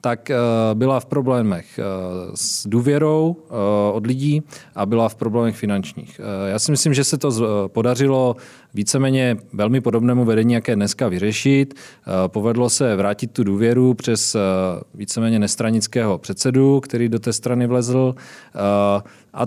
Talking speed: 130 wpm